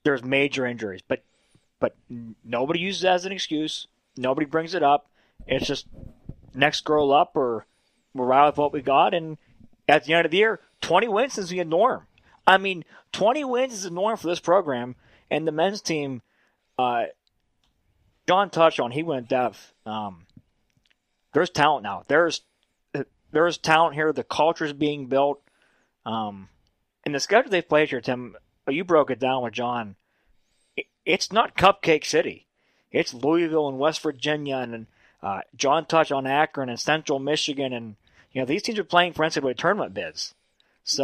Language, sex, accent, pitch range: English, male, American, 125-160 Hz